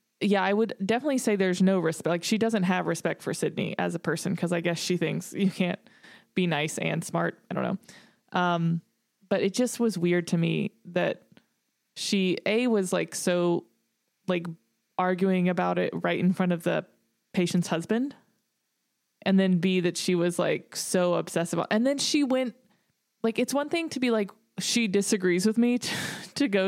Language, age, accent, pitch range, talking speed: English, 20-39, American, 180-220 Hz, 190 wpm